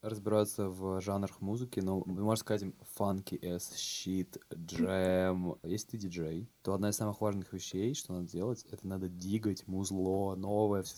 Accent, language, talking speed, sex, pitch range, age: native, Russian, 165 wpm, male, 95-110 Hz, 20-39